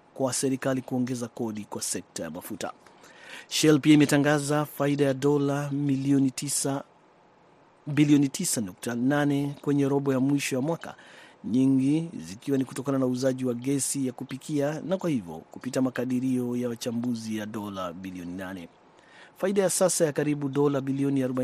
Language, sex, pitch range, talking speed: Swahili, male, 125-145 Hz, 145 wpm